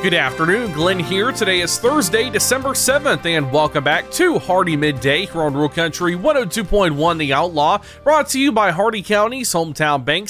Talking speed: 170 wpm